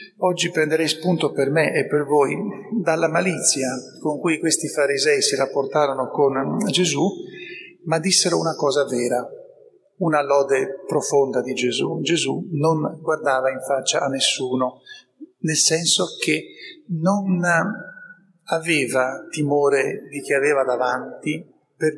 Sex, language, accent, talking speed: male, Italian, native, 125 wpm